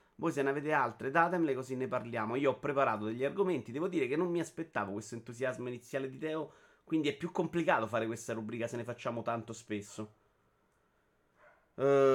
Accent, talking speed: native, 190 wpm